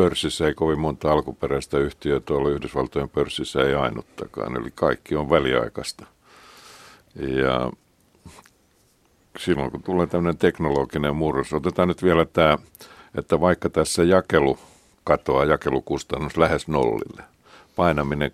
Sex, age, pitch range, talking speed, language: male, 60-79, 70-85 Hz, 115 wpm, Finnish